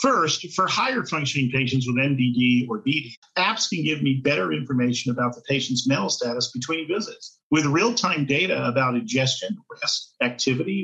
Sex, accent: male, American